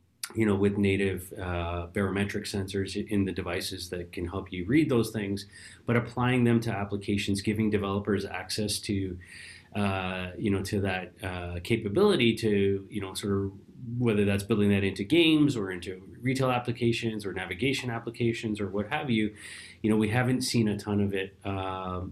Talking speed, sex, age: 175 wpm, male, 30-49